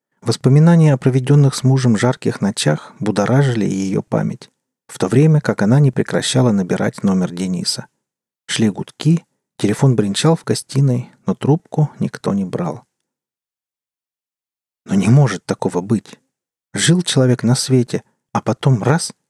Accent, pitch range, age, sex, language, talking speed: native, 115-155 Hz, 40-59, male, Russian, 135 wpm